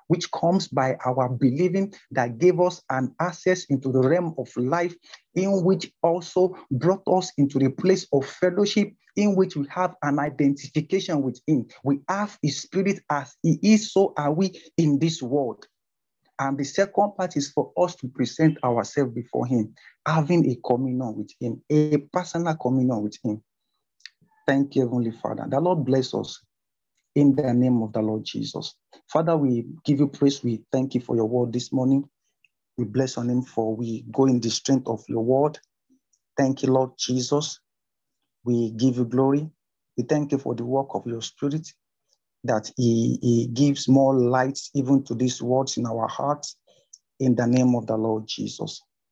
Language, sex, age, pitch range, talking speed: English, male, 50-69, 125-160 Hz, 180 wpm